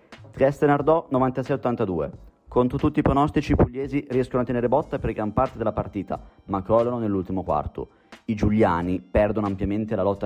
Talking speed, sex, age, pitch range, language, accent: 165 wpm, male, 30-49, 100-125 Hz, Italian, native